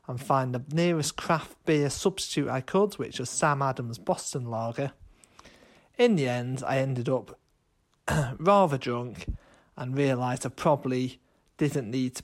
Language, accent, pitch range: English, British, 125-160 Hz